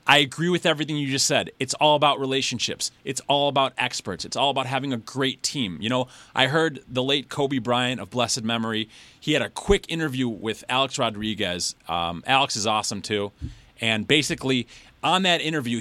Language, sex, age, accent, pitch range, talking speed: English, male, 30-49, American, 120-155 Hz, 195 wpm